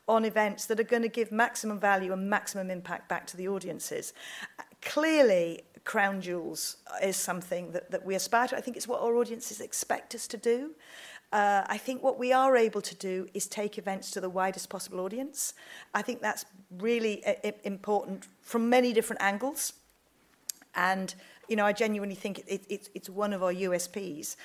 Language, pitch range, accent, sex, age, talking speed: English, 190-235 Hz, British, female, 40-59, 190 wpm